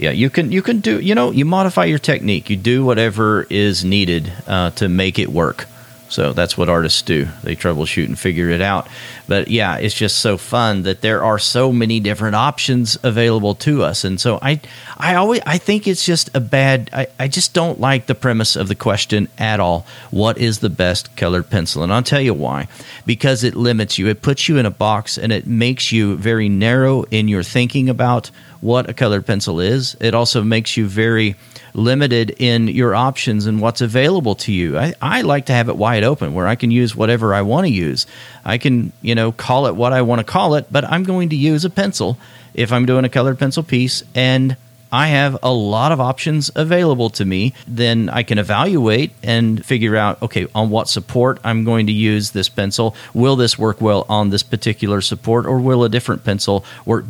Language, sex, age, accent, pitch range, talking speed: English, male, 40-59, American, 105-135 Hz, 220 wpm